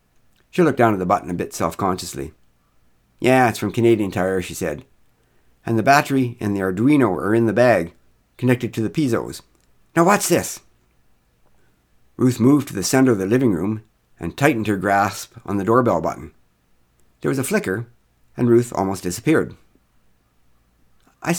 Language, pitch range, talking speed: English, 95-130 Hz, 165 wpm